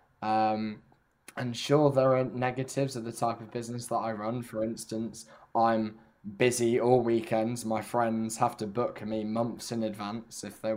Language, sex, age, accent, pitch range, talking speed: English, male, 10-29, British, 105-125 Hz, 180 wpm